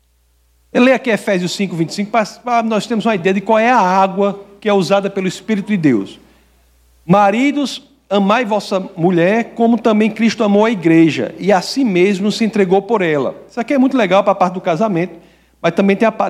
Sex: male